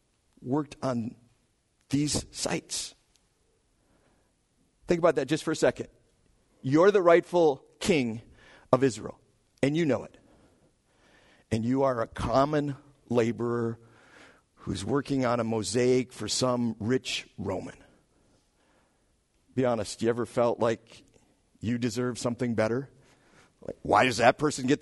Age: 50-69